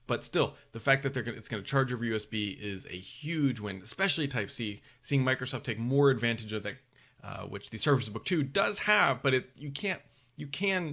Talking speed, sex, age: 225 wpm, male, 30-49